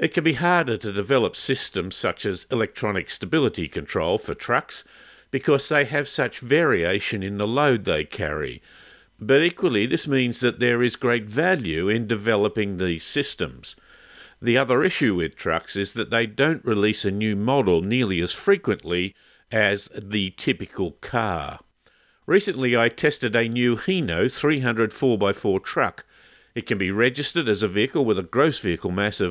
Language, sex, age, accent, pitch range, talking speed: English, male, 50-69, Australian, 100-130 Hz, 160 wpm